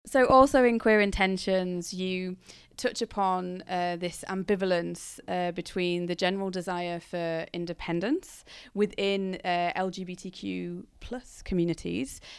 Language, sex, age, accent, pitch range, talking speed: English, female, 20-39, British, 175-205 Hz, 110 wpm